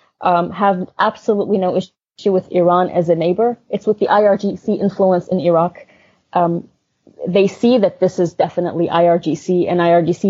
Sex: female